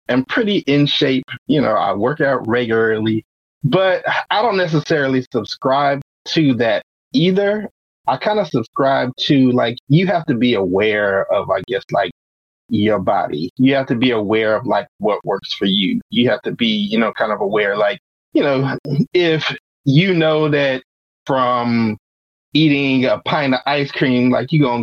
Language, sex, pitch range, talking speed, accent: English, male, 120-175 Hz, 175 wpm, American